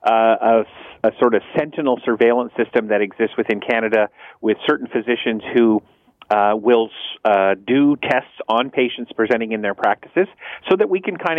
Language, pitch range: English, 110-125 Hz